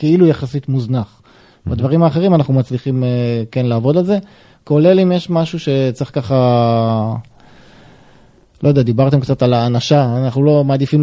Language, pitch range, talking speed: Hebrew, 125-155 Hz, 145 wpm